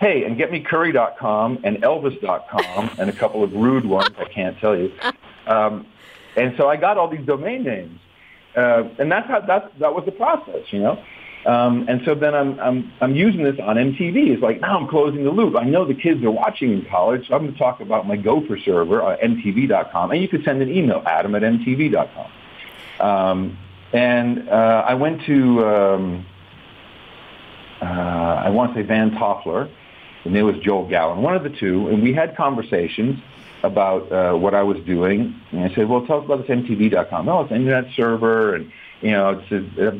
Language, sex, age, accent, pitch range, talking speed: English, male, 50-69, American, 95-135 Hz, 200 wpm